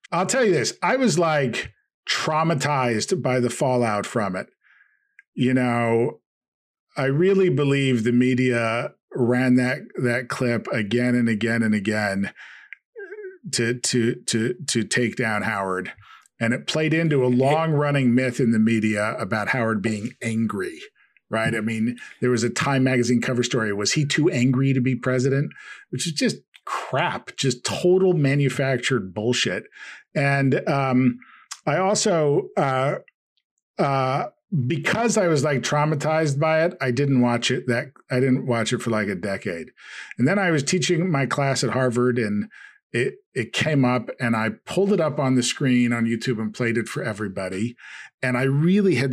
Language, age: English, 40-59